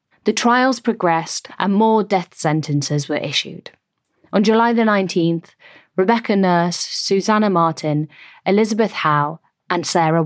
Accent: British